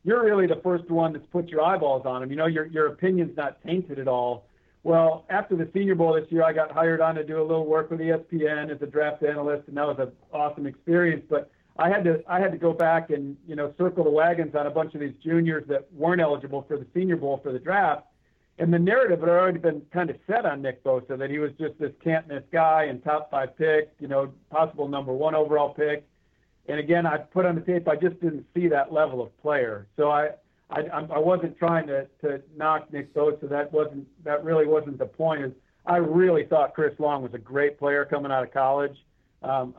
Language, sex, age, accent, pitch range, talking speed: English, male, 50-69, American, 145-165 Hz, 235 wpm